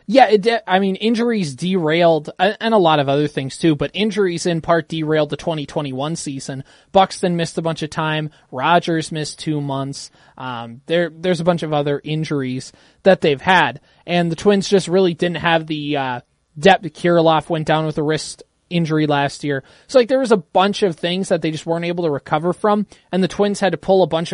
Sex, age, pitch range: male, 20-39, 155-190 Hz